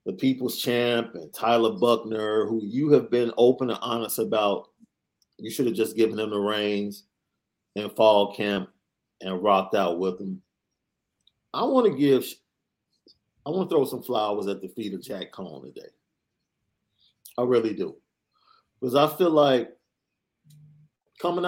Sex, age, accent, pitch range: male, 40-59, American, 110-135 Hz